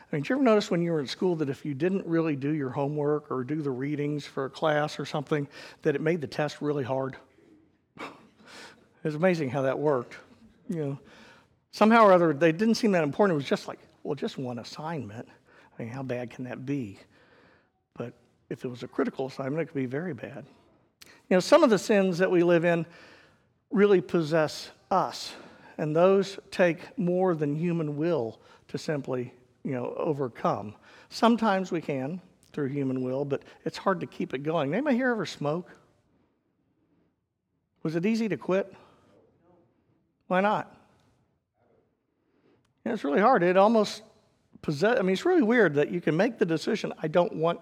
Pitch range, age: 140-190 Hz, 50-69